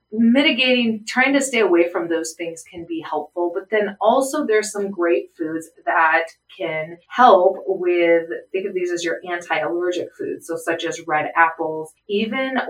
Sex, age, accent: female, 30-49, American